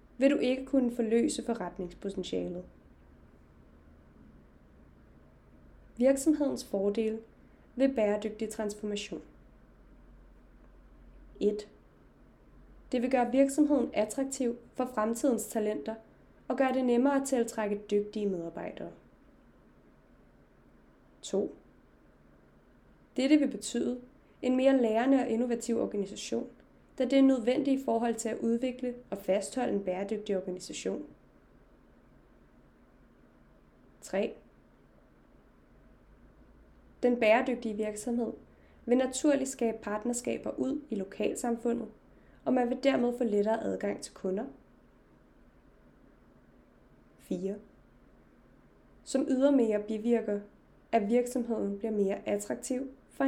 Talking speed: 95 wpm